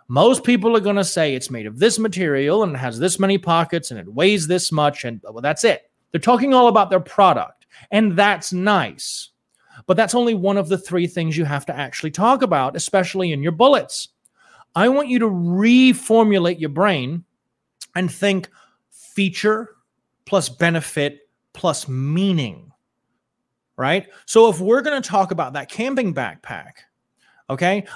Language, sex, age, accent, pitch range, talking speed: English, male, 30-49, American, 155-210 Hz, 165 wpm